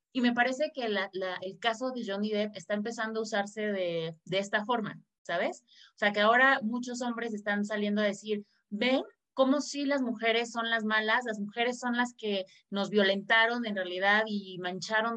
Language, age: Spanish, 30-49